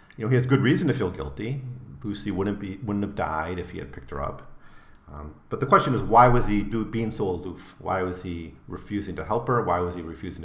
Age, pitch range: 40-59, 85-120 Hz